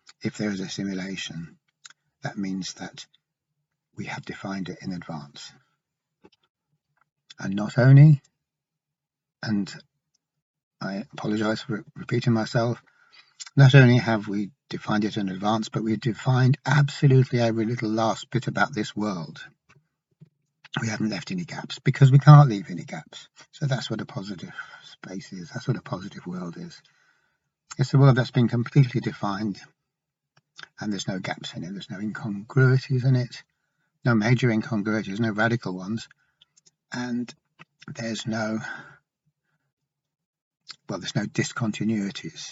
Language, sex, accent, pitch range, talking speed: English, male, British, 110-150 Hz, 135 wpm